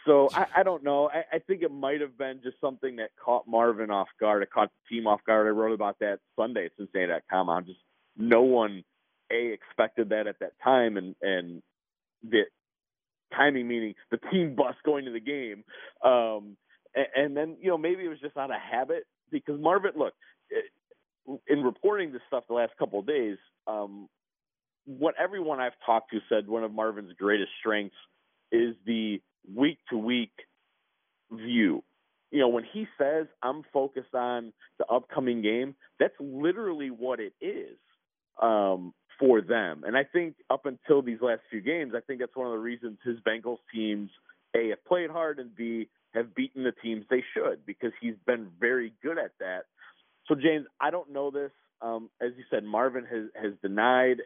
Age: 30-49